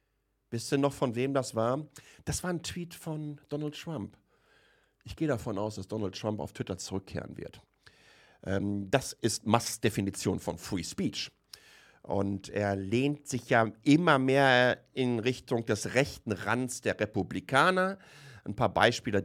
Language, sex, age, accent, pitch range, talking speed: German, male, 50-69, German, 100-140 Hz, 155 wpm